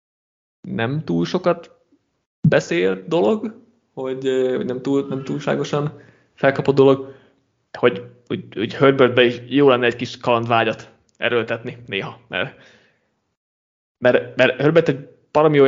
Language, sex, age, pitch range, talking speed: Hungarian, male, 20-39, 115-140 Hz, 120 wpm